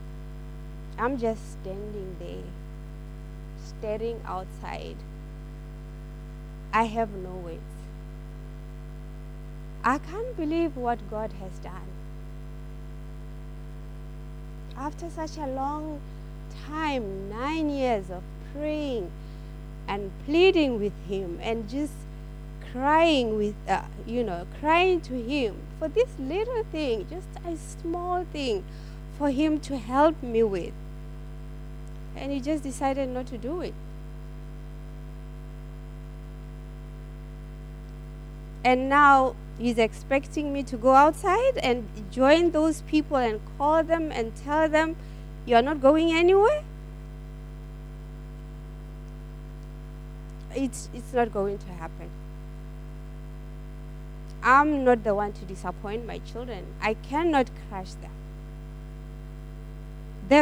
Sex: female